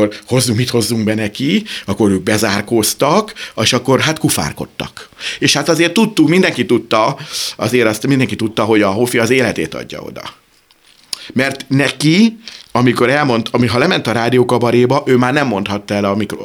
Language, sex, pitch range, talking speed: Hungarian, male, 105-130 Hz, 170 wpm